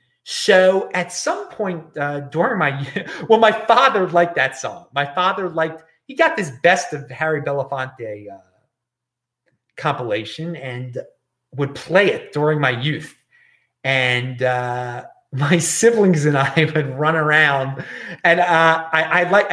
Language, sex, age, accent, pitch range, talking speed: English, male, 30-49, American, 135-180 Hz, 140 wpm